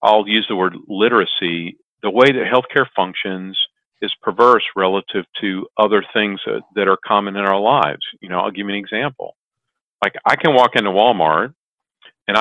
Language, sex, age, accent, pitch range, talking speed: English, male, 50-69, American, 90-125 Hz, 175 wpm